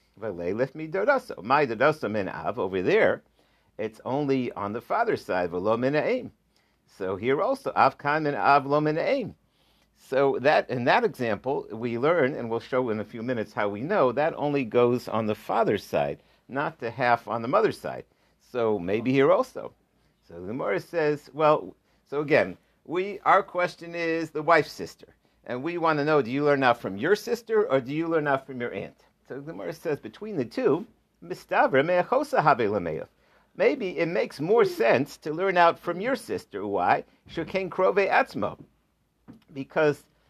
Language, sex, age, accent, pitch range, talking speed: English, male, 50-69, American, 125-165 Hz, 155 wpm